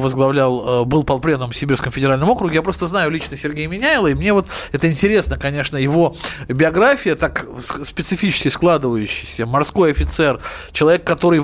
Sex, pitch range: male, 135-180 Hz